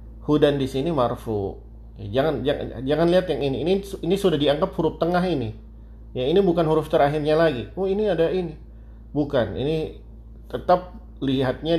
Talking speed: 160 wpm